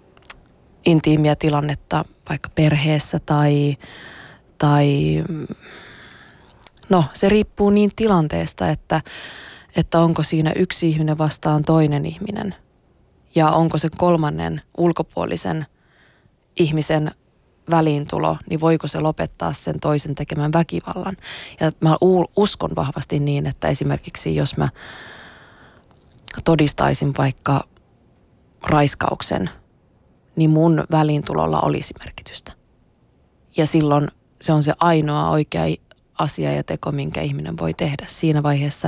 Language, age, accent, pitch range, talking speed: Finnish, 20-39, native, 145-165 Hz, 105 wpm